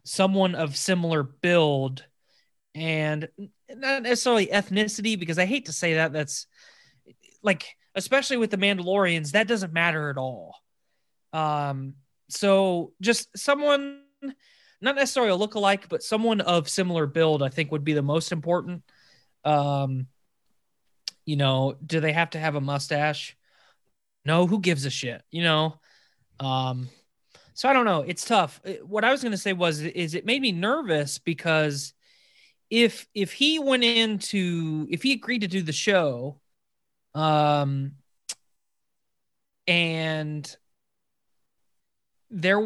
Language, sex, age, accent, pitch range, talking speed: English, male, 20-39, American, 150-200 Hz, 135 wpm